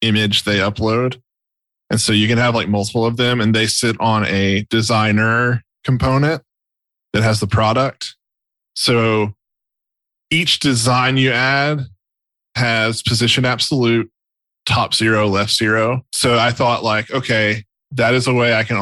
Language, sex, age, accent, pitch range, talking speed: English, male, 10-29, American, 110-125 Hz, 145 wpm